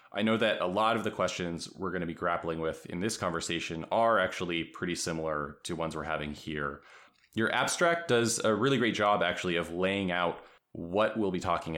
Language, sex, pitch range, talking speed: English, male, 85-105 Hz, 210 wpm